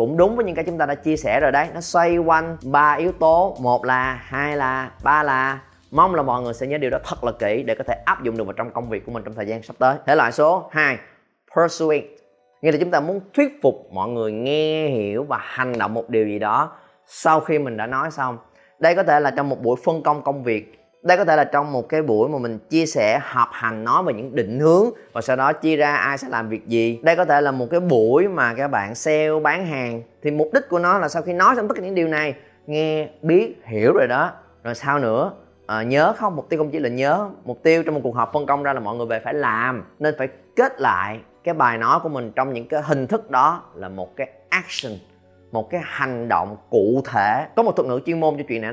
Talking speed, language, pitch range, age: 265 wpm, Vietnamese, 115-155 Hz, 20-39